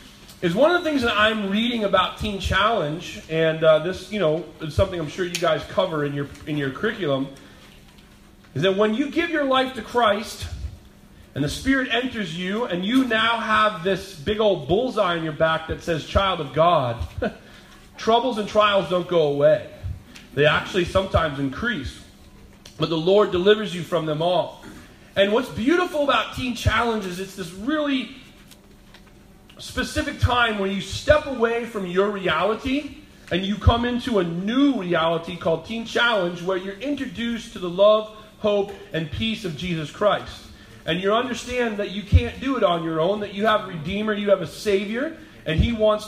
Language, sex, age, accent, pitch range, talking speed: English, male, 30-49, American, 175-235 Hz, 180 wpm